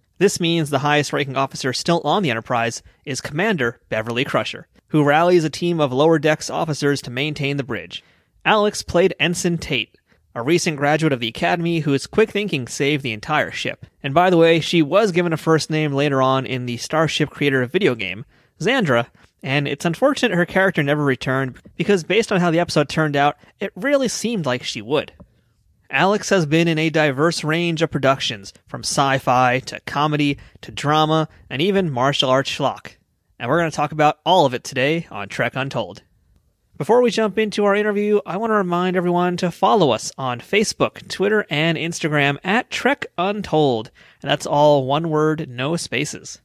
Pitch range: 135-175 Hz